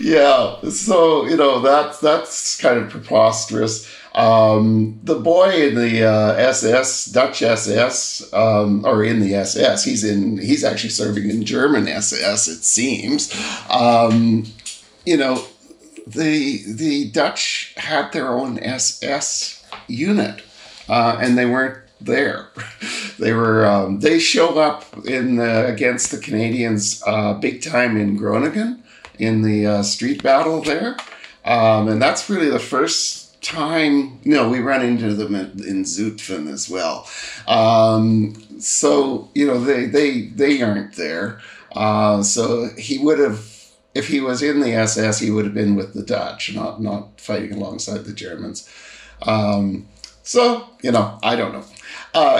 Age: 50-69